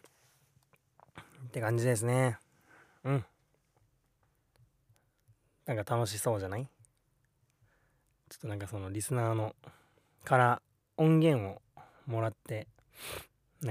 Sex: male